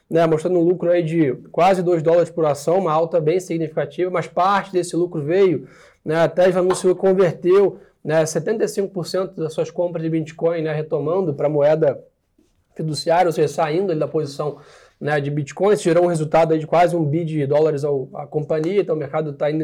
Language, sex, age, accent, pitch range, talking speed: Portuguese, male, 20-39, Brazilian, 155-180 Hz, 200 wpm